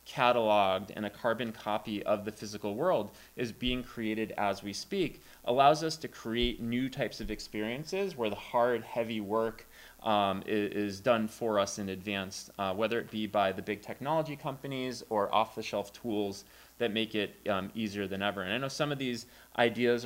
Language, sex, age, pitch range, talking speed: English, male, 20-39, 100-120 Hz, 185 wpm